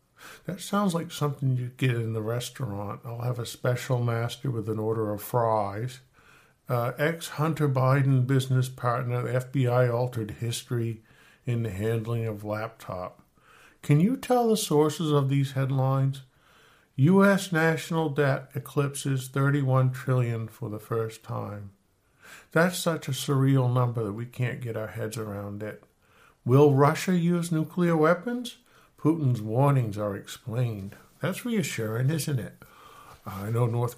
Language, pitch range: English, 115-150 Hz